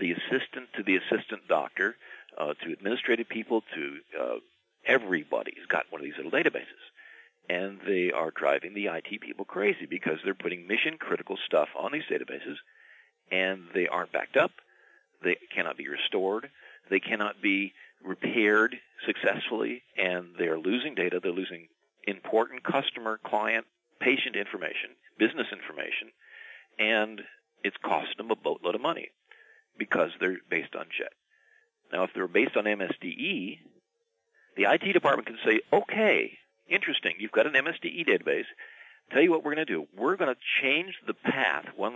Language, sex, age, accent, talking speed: English, male, 50-69, American, 155 wpm